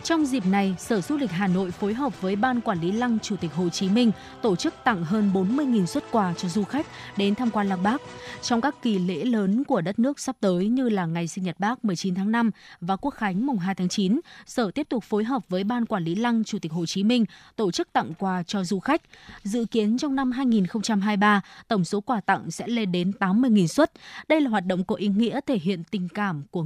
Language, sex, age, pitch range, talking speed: Vietnamese, female, 20-39, 190-240 Hz, 245 wpm